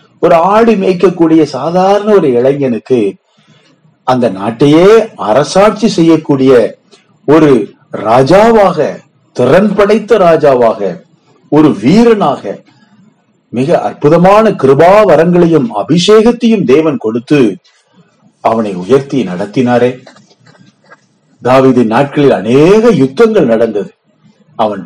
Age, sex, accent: 50-69, male, native